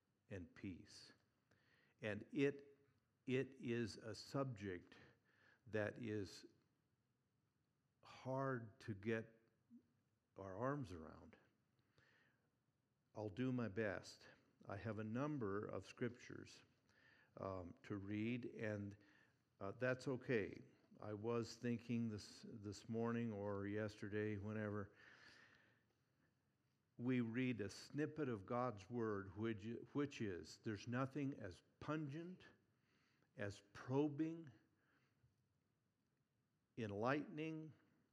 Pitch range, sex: 105-130 Hz, male